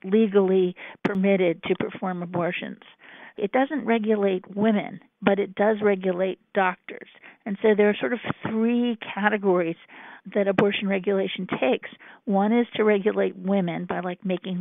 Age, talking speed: 50-69, 140 wpm